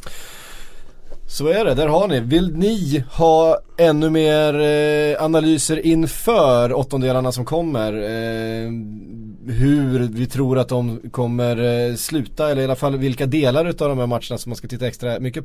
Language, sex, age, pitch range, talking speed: Swedish, male, 20-39, 115-145 Hz, 150 wpm